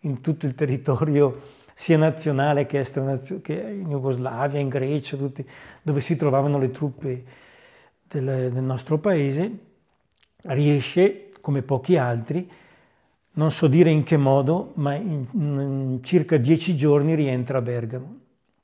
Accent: native